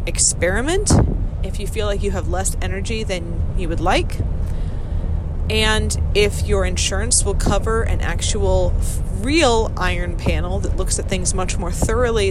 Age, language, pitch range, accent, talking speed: 30-49, English, 80-90 Hz, American, 150 wpm